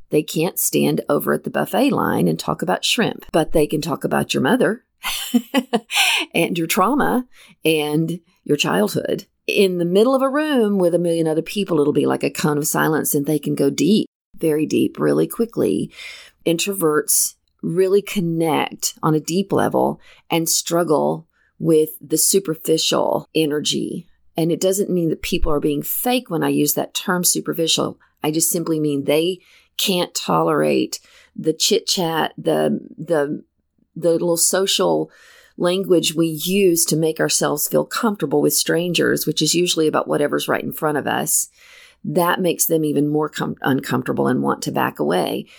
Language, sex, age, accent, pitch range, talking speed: English, female, 40-59, American, 155-190 Hz, 165 wpm